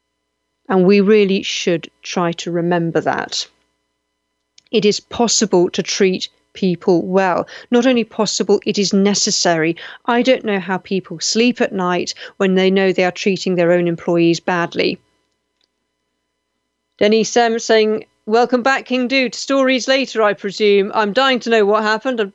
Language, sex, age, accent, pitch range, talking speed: English, female, 40-59, British, 185-245 Hz, 150 wpm